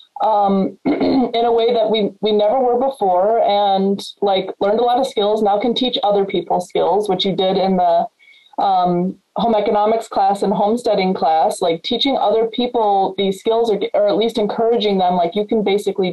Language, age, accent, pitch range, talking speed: English, 20-39, American, 190-235 Hz, 190 wpm